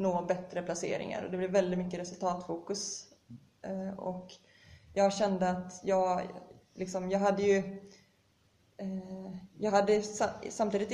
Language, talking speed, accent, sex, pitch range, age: Swedish, 115 wpm, native, female, 180-200 Hz, 20-39